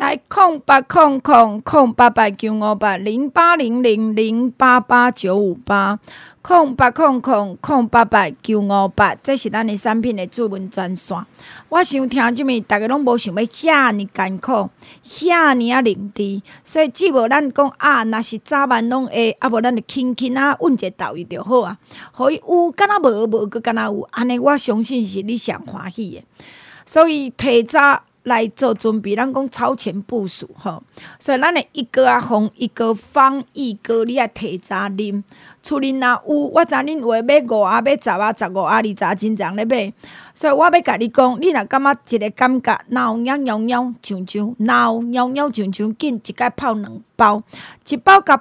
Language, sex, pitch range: Chinese, female, 210-270 Hz